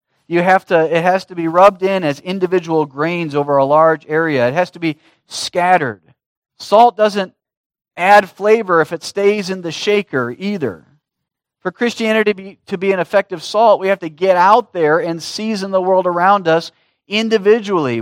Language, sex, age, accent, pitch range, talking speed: English, male, 40-59, American, 180-230 Hz, 180 wpm